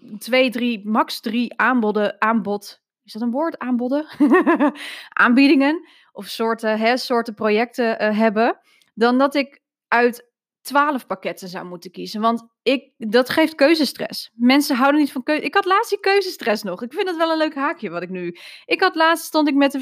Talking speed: 185 wpm